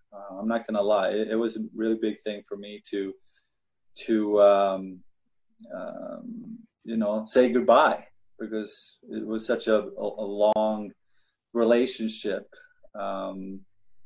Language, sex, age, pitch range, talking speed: English, male, 20-39, 105-120 Hz, 140 wpm